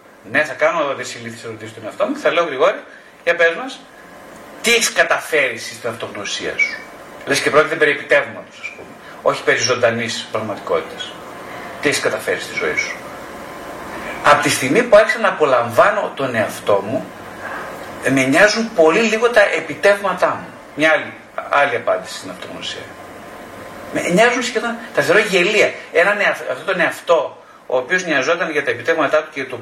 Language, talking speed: Greek, 155 wpm